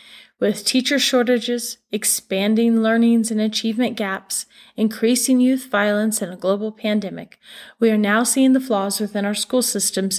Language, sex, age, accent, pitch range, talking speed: English, female, 30-49, American, 200-245 Hz, 145 wpm